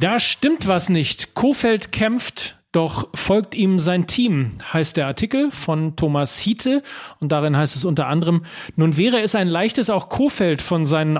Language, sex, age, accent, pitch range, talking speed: German, male, 40-59, German, 145-180 Hz, 170 wpm